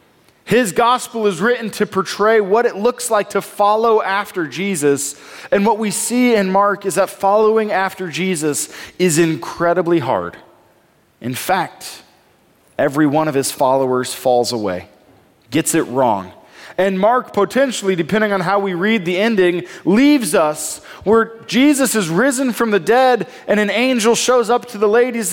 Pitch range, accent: 165-215 Hz, American